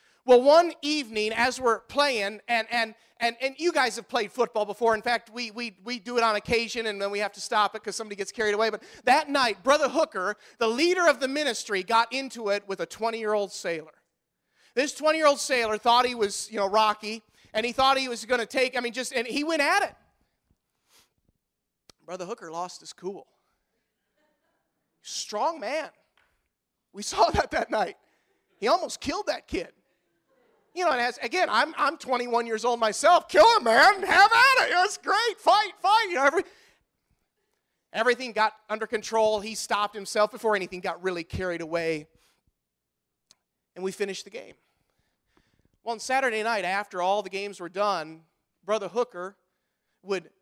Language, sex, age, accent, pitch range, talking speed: English, male, 40-59, American, 195-260 Hz, 180 wpm